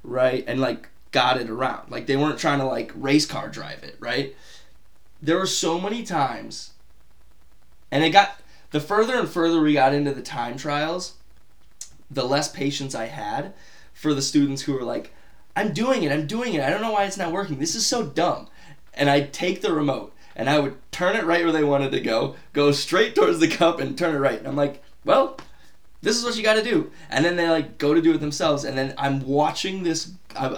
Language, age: English, 20-39